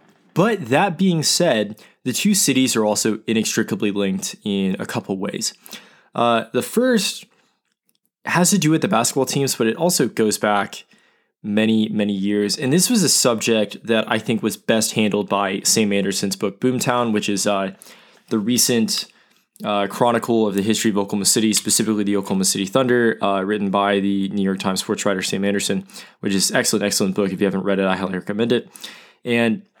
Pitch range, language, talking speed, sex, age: 100-125 Hz, English, 185 wpm, male, 20-39